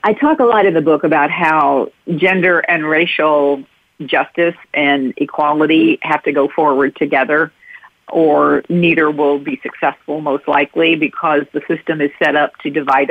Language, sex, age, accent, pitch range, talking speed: English, female, 50-69, American, 150-195 Hz, 160 wpm